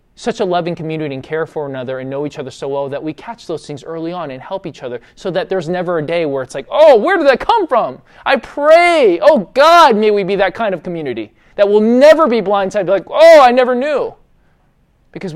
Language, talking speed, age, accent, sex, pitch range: English, 240 wpm, 20-39, American, male, 150-225 Hz